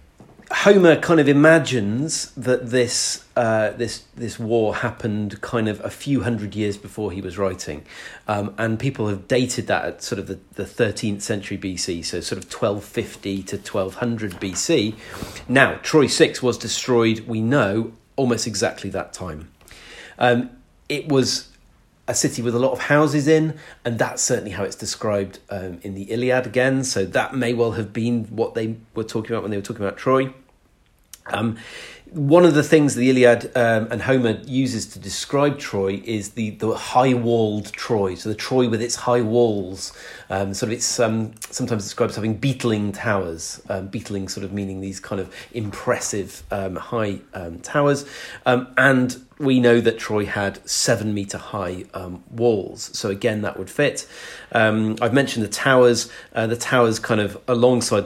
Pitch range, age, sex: 100-125 Hz, 40-59, male